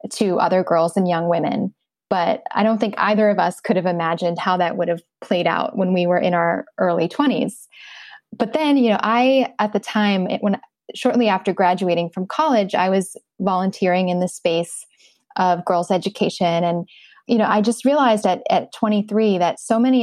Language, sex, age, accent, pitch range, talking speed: English, female, 20-39, American, 175-225 Hz, 190 wpm